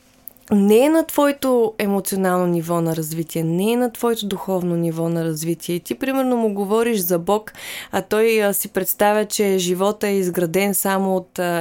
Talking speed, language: 180 wpm, Bulgarian